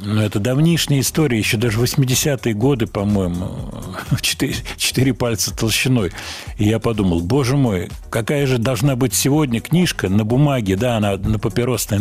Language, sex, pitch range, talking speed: Russian, male, 95-125 Hz, 145 wpm